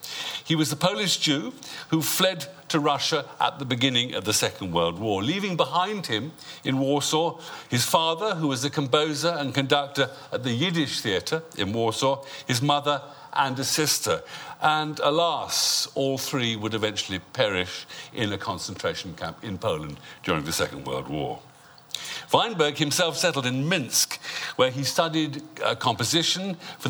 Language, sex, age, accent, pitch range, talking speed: English, male, 50-69, British, 130-160 Hz, 155 wpm